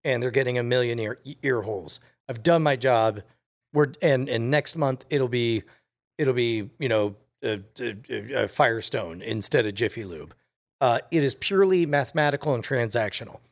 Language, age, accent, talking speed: English, 40-59, American, 150 wpm